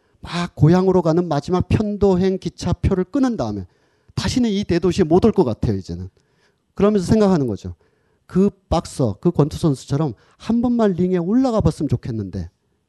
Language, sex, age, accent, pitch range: Korean, male, 40-59, native, 125-180 Hz